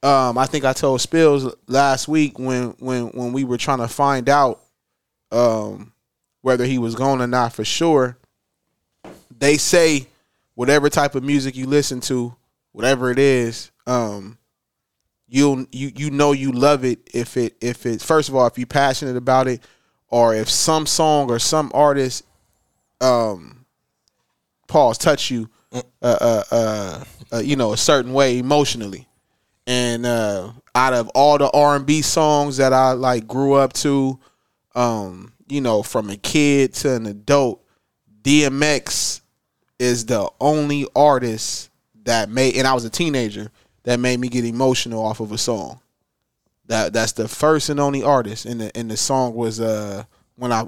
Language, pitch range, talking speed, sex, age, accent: English, 115-140 Hz, 170 wpm, male, 20-39, American